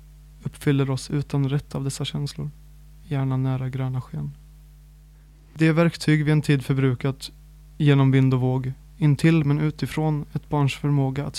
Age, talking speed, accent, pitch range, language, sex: 20-39, 155 wpm, native, 135-150 Hz, Swedish, male